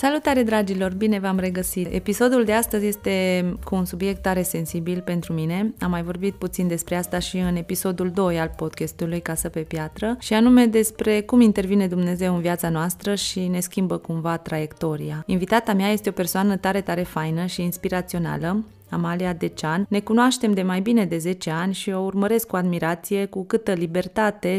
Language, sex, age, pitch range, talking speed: Romanian, female, 20-39, 175-210 Hz, 180 wpm